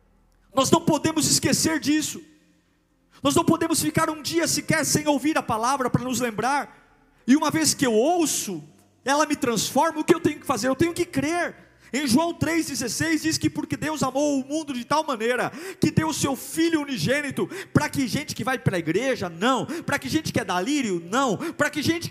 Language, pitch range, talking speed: Portuguese, 245-320 Hz, 205 wpm